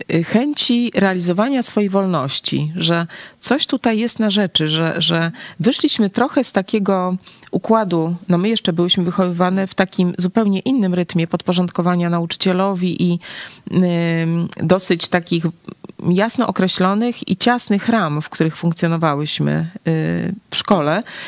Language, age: Polish, 30-49